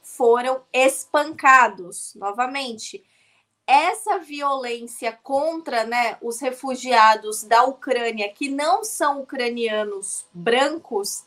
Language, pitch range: Portuguese, 230-280 Hz